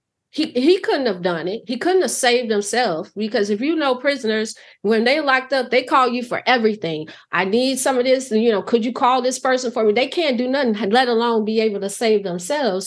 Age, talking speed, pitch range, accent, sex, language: 30-49, 235 wpm, 195-250 Hz, American, female, English